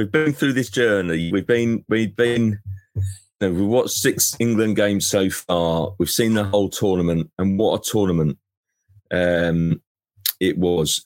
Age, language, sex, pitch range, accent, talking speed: 30-49, English, male, 85-110 Hz, British, 150 wpm